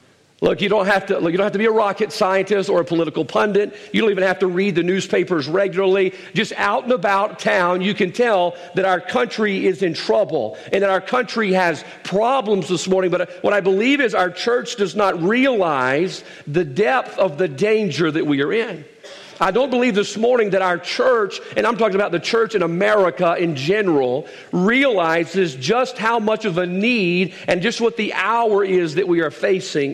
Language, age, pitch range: English, 50-69, 180-220 Hz